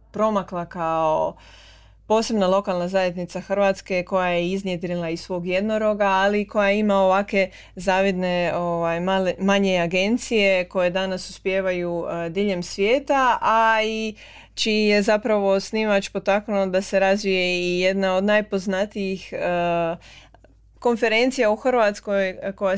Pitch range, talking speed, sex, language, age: 180-210 Hz, 120 wpm, female, Croatian, 20-39